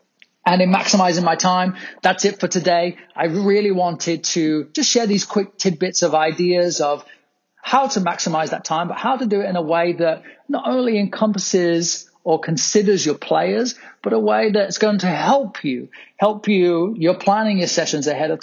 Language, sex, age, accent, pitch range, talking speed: English, male, 30-49, British, 155-190 Hz, 190 wpm